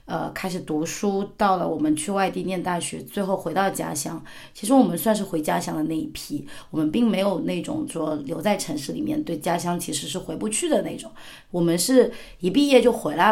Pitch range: 165-205 Hz